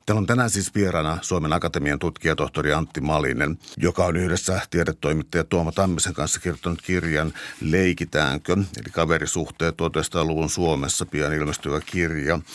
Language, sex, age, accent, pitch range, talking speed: Finnish, male, 60-79, native, 80-95 Hz, 130 wpm